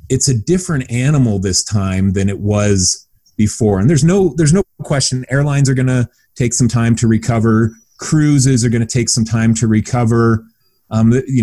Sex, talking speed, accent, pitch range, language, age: male, 190 wpm, American, 100-130 Hz, English, 30-49